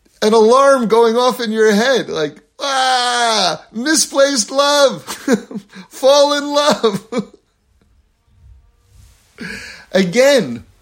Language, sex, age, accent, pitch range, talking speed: English, male, 50-69, American, 160-250 Hz, 85 wpm